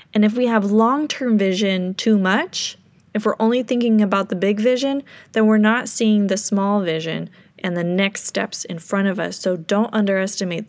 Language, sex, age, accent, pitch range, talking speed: English, female, 20-39, American, 185-225 Hz, 190 wpm